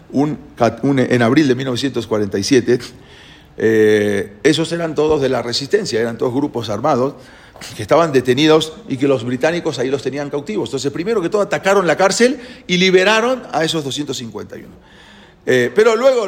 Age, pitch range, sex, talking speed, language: 40-59, 110-165 Hz, male, 150 wpm, English